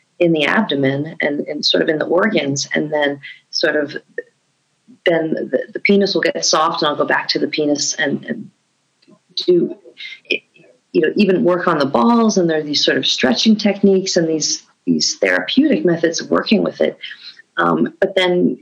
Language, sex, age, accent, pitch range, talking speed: English, female, 40-59, American, 150-200 Hz, 185 wpm